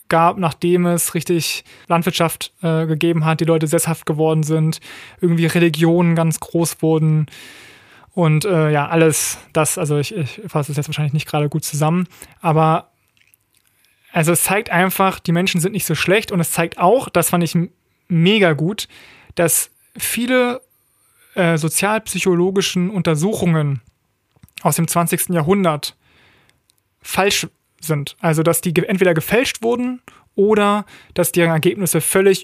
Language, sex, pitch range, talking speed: German, male, 160-185 Hz, 140 wpm